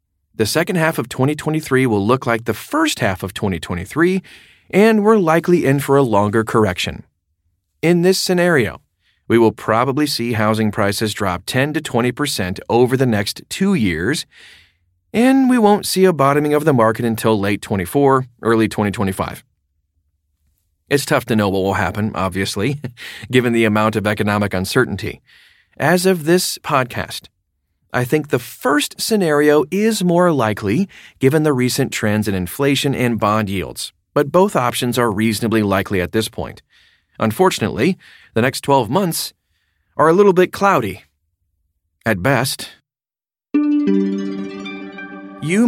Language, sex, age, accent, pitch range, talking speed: English, male, 40-59, American, 100-155 Hz, 145 wpm